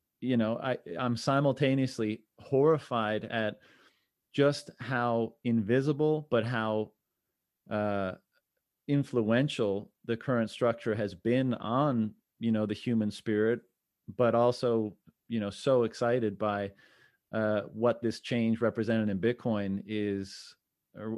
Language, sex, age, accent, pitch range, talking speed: English, male, 30-49, American, 110-125 Hz, 115 wpm